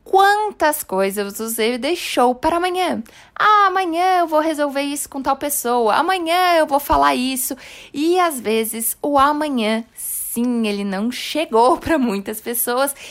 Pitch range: 215-290 Hz